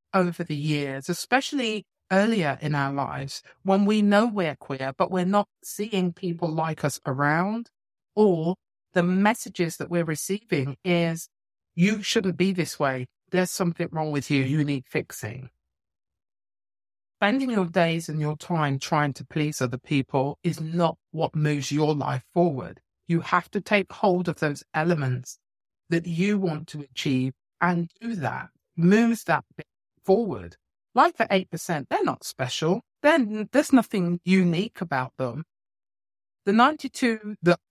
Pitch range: 150-205 Hz